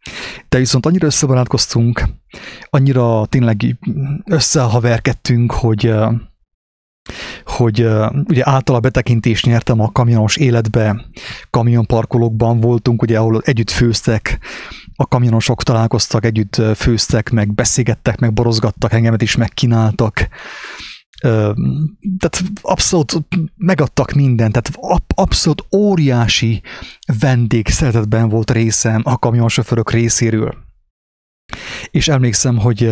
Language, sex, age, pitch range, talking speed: English, male, 30-49, 110-125 Hz, 95 wpm